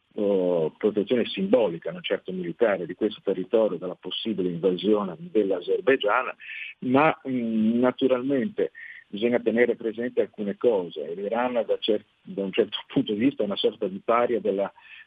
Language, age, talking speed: Italian, 50-69, 125 wpm